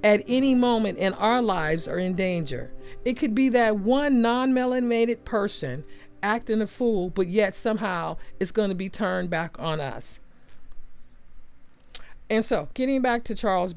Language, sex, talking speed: English, female, 155 wpm